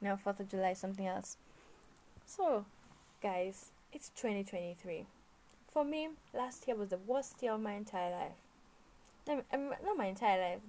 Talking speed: 145 wpm